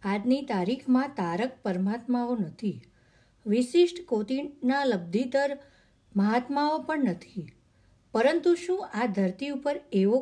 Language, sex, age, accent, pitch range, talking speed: Gujarati, female, 50-69, native, 205-265 Hz, 95 wpm